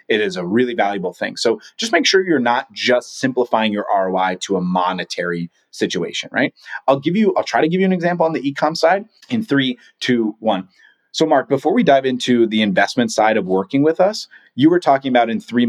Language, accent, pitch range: English, American, 110-160 Hz